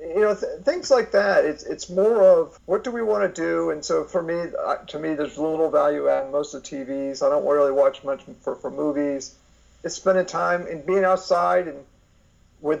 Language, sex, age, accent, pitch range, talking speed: English, male, 50-69, American, 140-185 Hz, 215 wpm